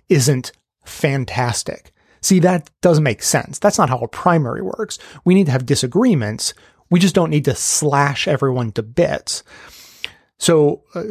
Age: 30-49